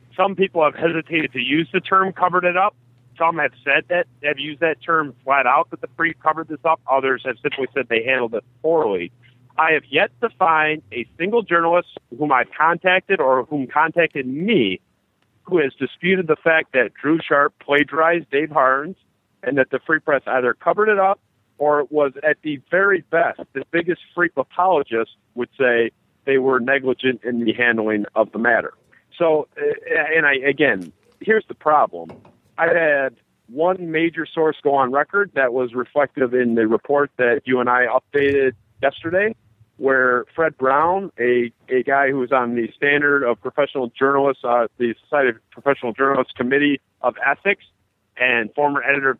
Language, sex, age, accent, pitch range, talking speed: English, male, 50-69, American, 125-165 Hz, 175 wpm